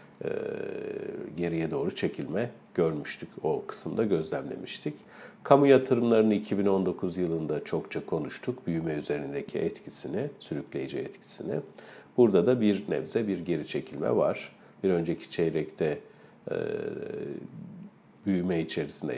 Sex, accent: male, native